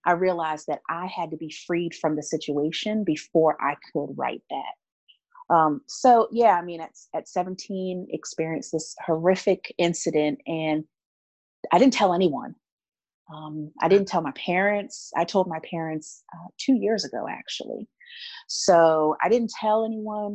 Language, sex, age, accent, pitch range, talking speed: English, female, 30-49, American, 155-190 Hz, 160 wpm